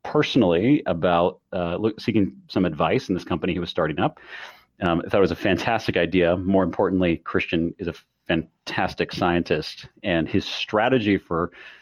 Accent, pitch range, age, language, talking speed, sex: American, 85-100 Hz, 30-49, English, 160 wpm, male